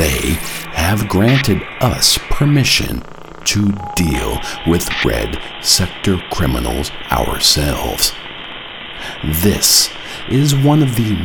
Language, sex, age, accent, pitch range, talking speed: English, male, 50-69, American, 75-105 Hz, 90 wpm